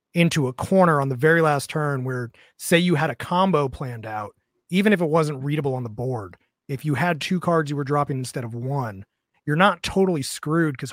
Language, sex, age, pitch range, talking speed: English, male, 30-49, 125-165 Hz, 220 wpm